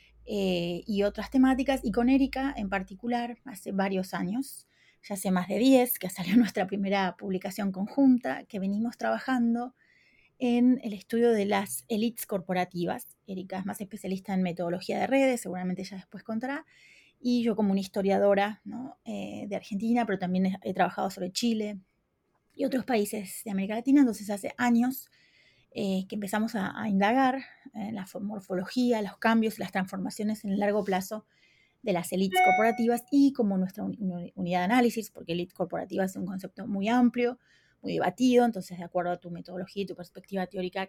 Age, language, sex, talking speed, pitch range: 30-49, Spanish, female, 180 wpm, 190-235 Hz